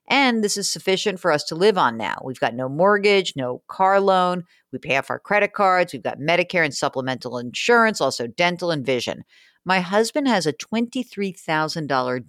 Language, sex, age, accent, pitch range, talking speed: English, female, 50-69, American, 135-200 Hz, 185 wpm